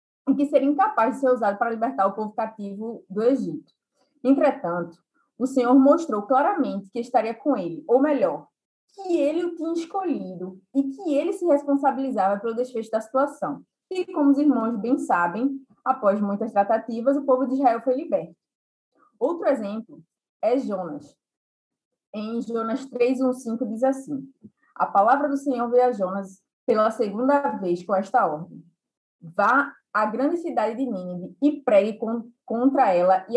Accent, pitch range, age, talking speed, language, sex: Brazilian, 210-275 Hz, 20-39, 160 wpm, Portuguese, female